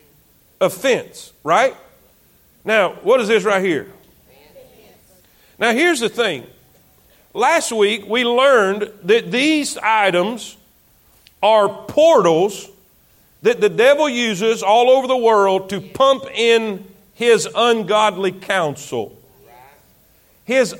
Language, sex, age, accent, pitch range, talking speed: English, male, 50-69, American, 185-265 Hz, 105 wpm